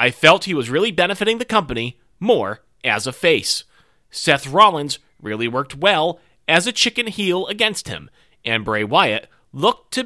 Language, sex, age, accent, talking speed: English, male, 30-49, American, 165 wpm